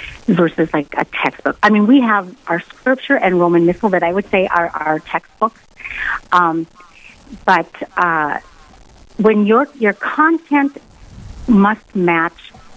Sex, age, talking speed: female, 50-69, 135 wpm